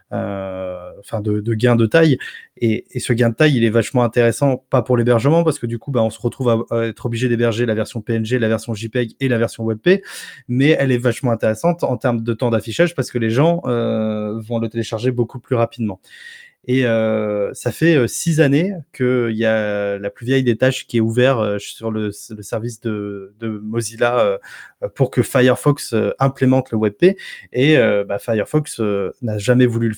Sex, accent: male, French